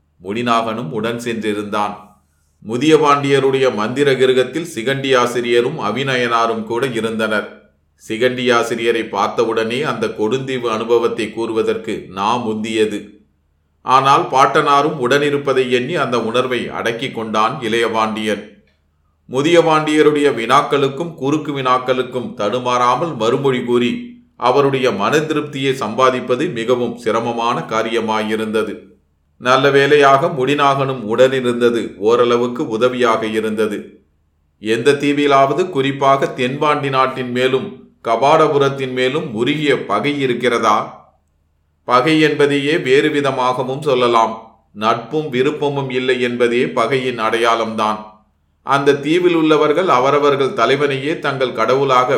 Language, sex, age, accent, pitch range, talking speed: Tamil, male, 30-49, native, 110-135 Hz, 90 wpm